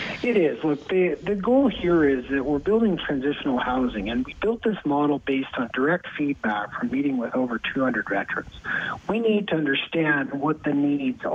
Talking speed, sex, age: 185 wpm, male, 40-59